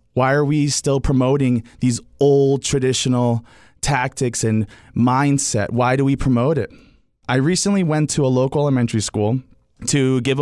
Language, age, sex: English, 20-39, male